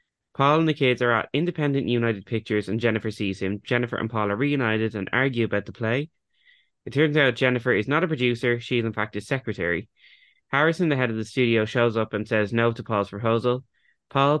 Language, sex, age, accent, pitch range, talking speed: English, male, 20-39, Irish, 110-135 Hz, 215 wpm